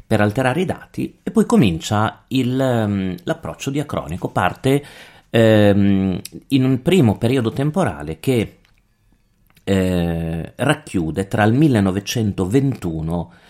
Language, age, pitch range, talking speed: Italian, 30-49, 90-120 Hz, 100 wpm